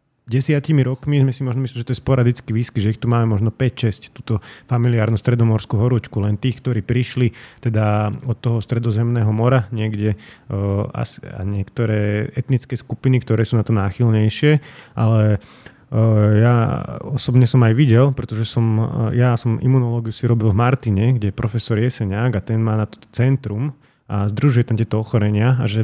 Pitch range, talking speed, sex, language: 110-130 Hz, 175 wpm, male, Slovak